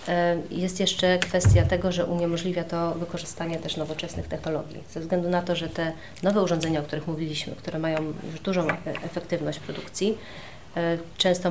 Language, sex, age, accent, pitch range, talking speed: Polish, female, 30-49, native, 155-180 Hz, 150 wpm